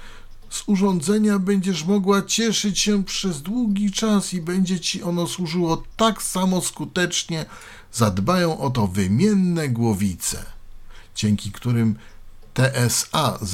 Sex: male